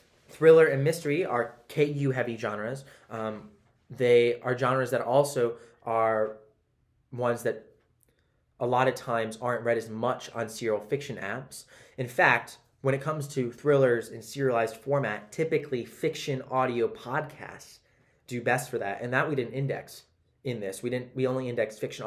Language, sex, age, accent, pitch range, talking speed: English, male, 20-39, American, 115-140 Hz, 160 wpm